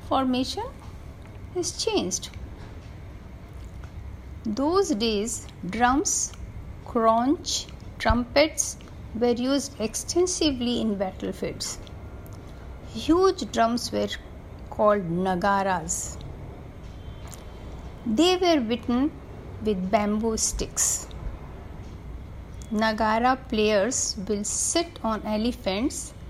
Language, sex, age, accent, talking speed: Hindi, female, 60-79, native, 70 wpm